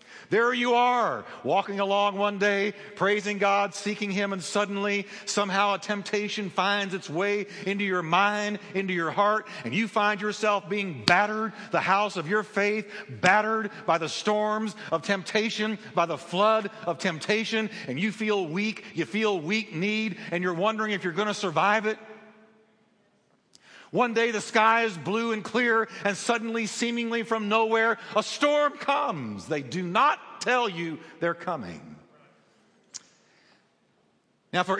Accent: American